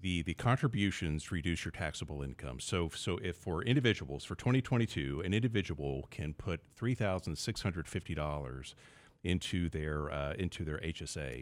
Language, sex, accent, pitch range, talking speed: English, male, American, 75-105 Hz, 160 wpm